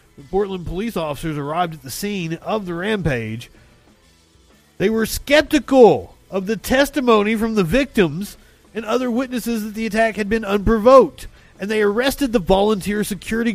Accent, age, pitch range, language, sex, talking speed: American, 40-59, 165-220 Hz, English, male, 155 wpm